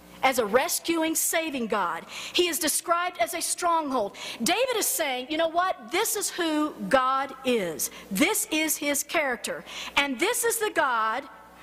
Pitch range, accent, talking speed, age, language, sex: 255-350 Hz, American, 160 wpm, 50-69, English, female